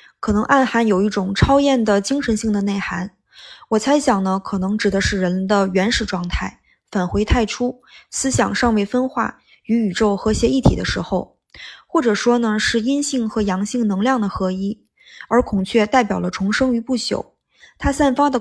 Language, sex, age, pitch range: Chinese, female, 20-39, 200-260 Hz